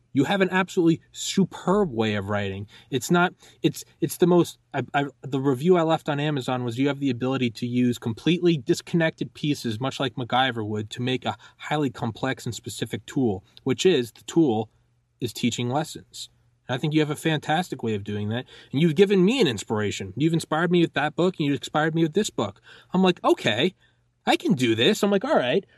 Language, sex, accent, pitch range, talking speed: English, male, American, 120-170 Hz, 215 wpm